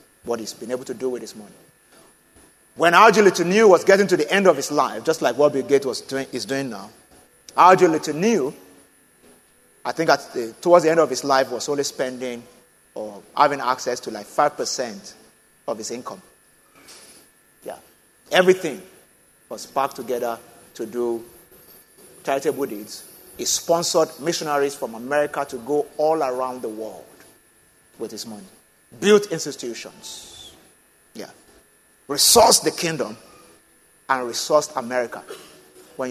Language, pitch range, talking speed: English, 125-165 Hz, 135 wpm